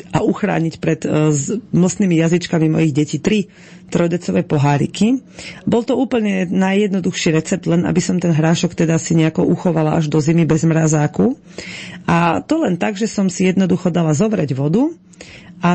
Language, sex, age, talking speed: Slovak, female, 40-59, 160 wpm